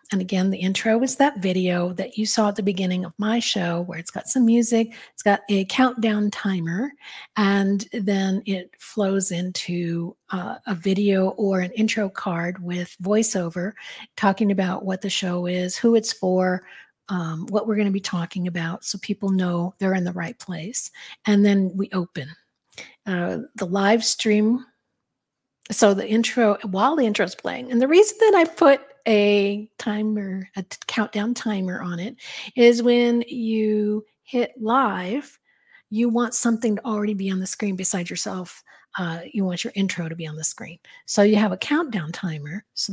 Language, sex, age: English, female, 50-69